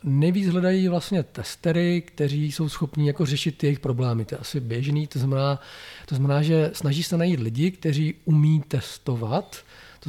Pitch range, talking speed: 130-155 Hz, 165 wpm